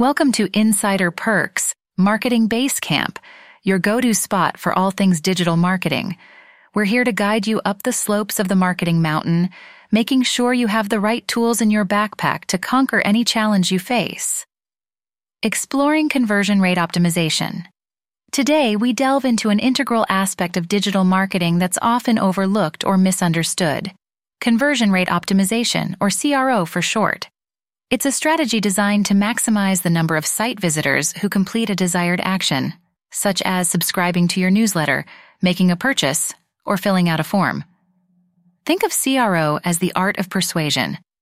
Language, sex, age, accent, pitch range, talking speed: English, female, 30-49, American, 180-230 Hz, 155 wpm